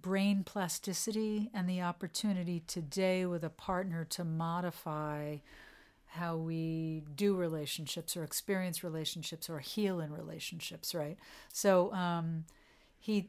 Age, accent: 50-69, American